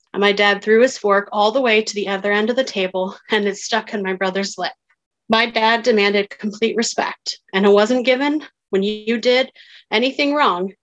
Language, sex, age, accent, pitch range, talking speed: English, female, 30-49, American, 200-235 Hz, 200 wpm